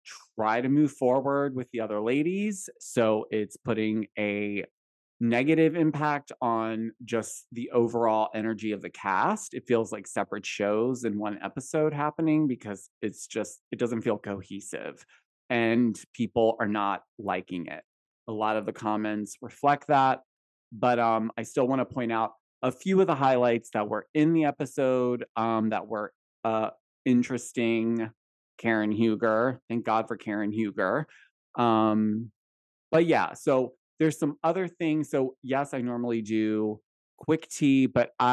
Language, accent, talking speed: English, American, 150 wpm